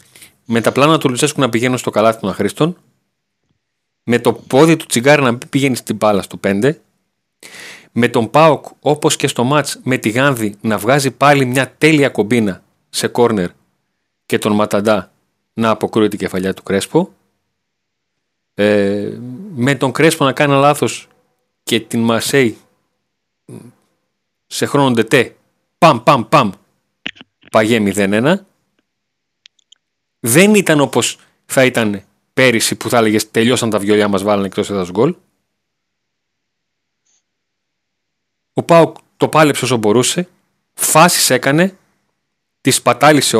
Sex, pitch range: male, 110-155 Hz